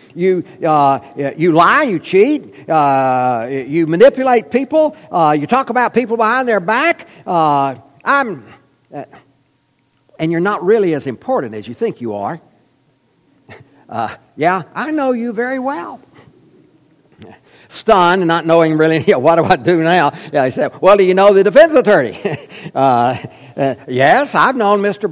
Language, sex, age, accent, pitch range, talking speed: English, male, 60-79, American, 140-225 Hz, 155 wpm